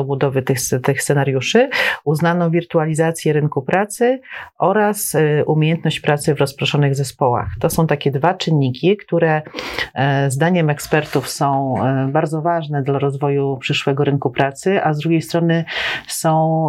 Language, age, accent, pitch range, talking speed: Polish, 40-59, native, 145-165 Hz, 125 wpm